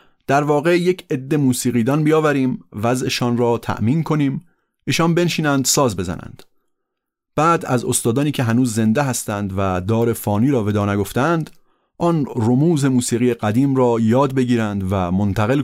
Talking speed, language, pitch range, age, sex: 140 wpm, Persian, 105-140 Hz, 30-49, male